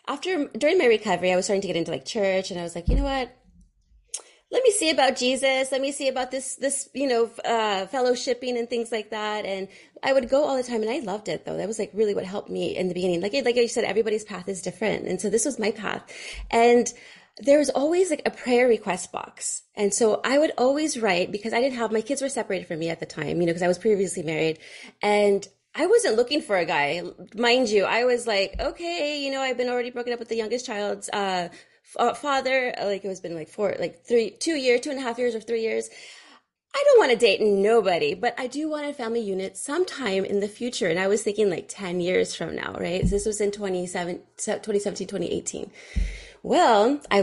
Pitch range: 200-270 Hz